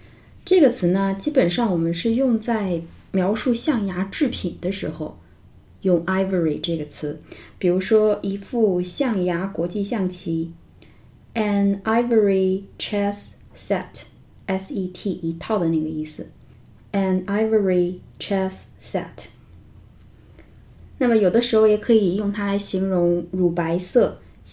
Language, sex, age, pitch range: Chinese, female, 20-39, 165-215 Hz